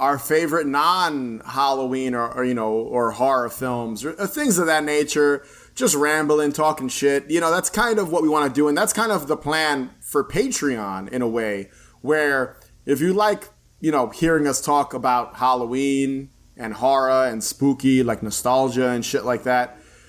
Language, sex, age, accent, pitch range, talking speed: English, male, 30-49, American, 125-150 Hz, 180 wpm